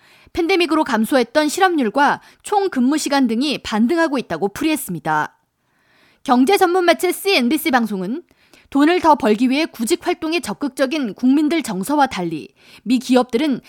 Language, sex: Korean, female